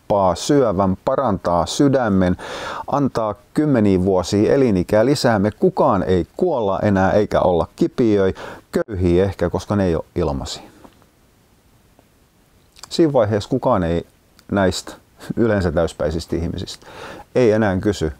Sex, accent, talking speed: male, native, 110 wpm